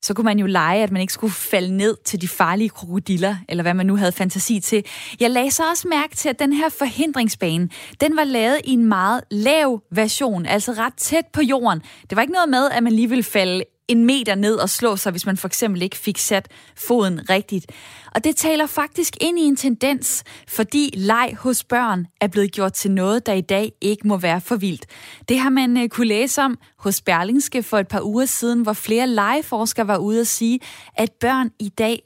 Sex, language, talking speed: female, Danish, 220 wpm